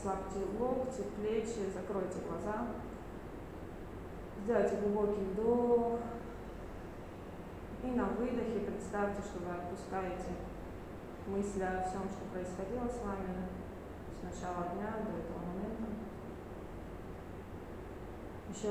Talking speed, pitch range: 95 wpm, 180-215 Hz